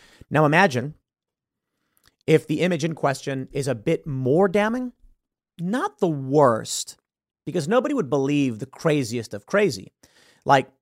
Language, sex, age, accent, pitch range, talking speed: English, male, 30-49, American, 130-190 Hz, 135 wpm